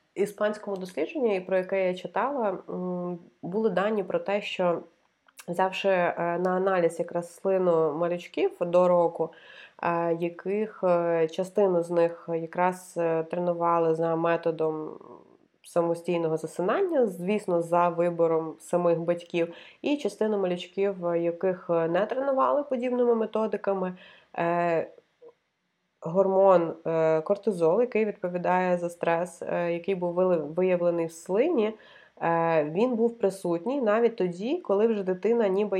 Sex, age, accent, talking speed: female, 20-39, native, 105 wpm